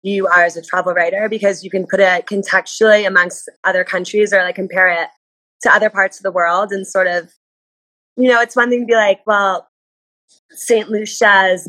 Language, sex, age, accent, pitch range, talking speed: English, female, 20-39, American, 180-220 Hz, 200 wpm